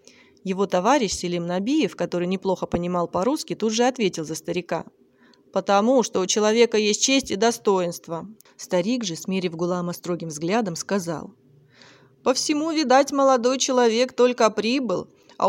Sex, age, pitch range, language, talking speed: female, 30-49, 180-245 Hz, Russian, 140 wpm